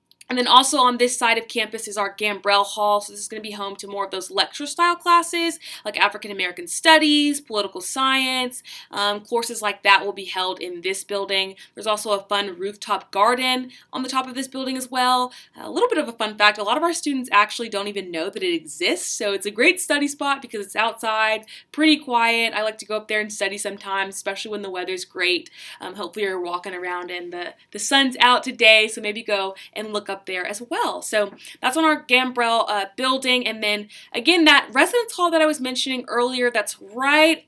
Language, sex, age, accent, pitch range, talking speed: English, female, 20-39, American, 200-265 Hz, 220 wpm